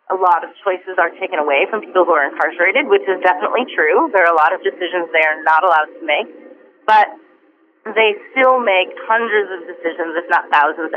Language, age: English, 30-49